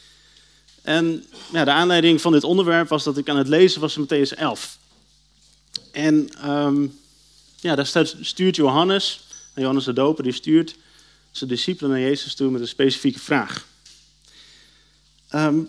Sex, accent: male, Dutch